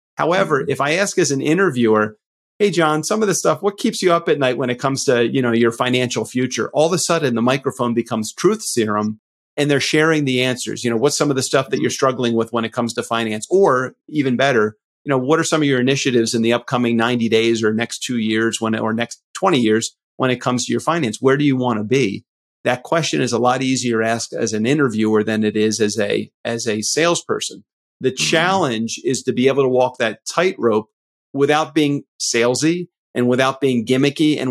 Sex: male